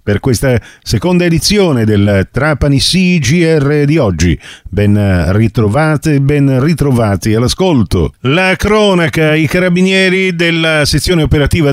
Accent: native